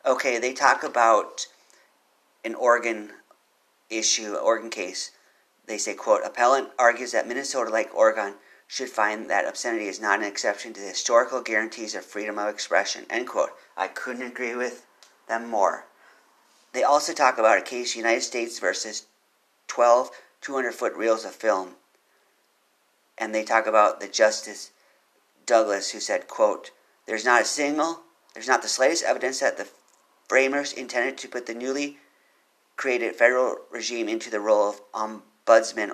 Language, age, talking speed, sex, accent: English, 40-59, 155 wpm, male, American